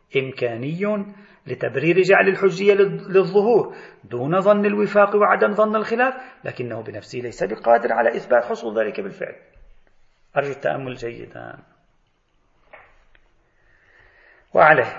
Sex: male